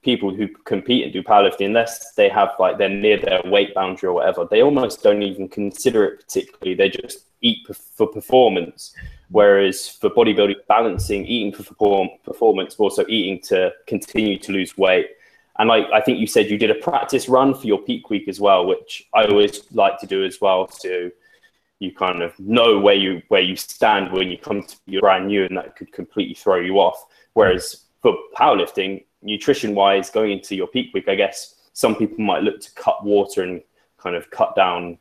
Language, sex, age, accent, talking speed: English, male, 20-39, British, 200 wpm